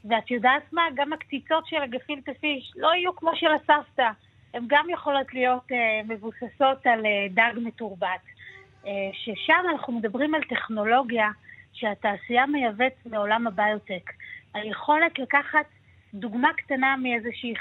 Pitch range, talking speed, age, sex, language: 215-280 Hz, 130 wpm, 30-49, female, Hebrew